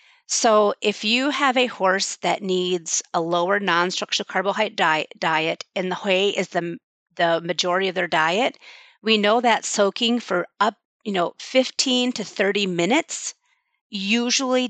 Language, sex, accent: English, female, American